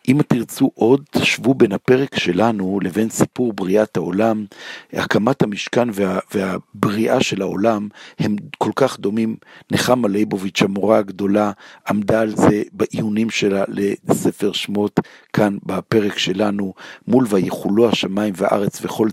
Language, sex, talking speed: Hebrew, male, 125 wpm